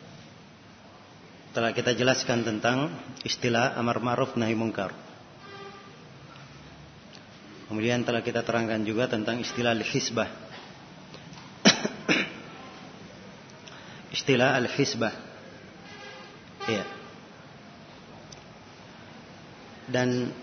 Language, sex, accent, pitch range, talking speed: Indonesian, male, native, 120-145 Hz, 60 wpm